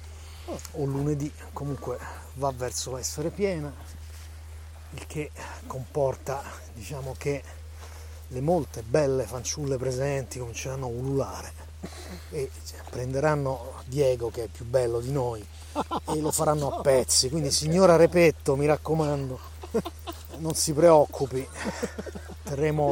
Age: 30-49